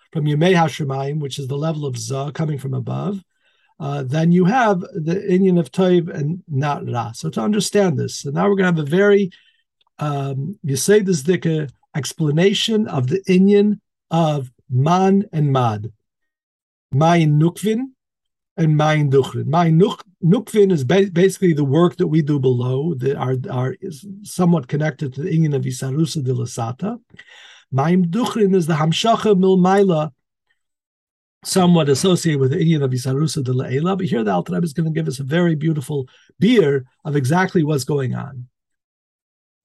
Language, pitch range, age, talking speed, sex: English, 140-190 Hz, 50-69, 160 wpm, male